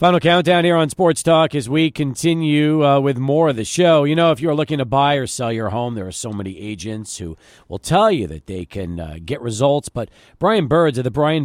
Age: 40-59